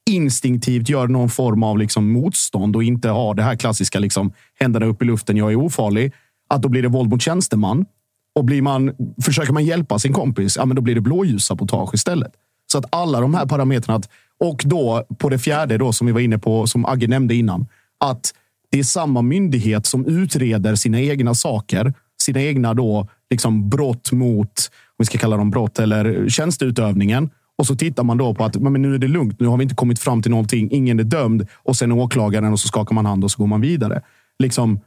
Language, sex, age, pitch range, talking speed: Swedish, male, 30-49, 110-135 Hz, 215 wpm